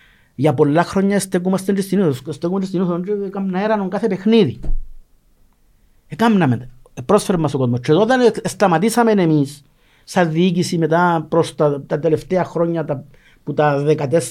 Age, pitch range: 50-69, 140-185 Hz